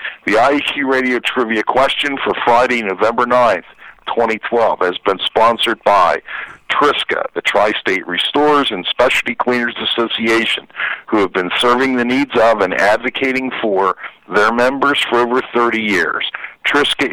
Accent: American